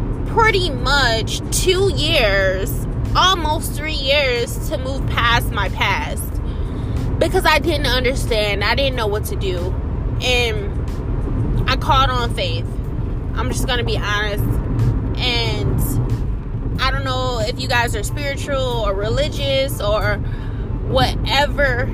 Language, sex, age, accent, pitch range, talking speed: English, female, 20-39, American, 115-130 Hz, 125 wpm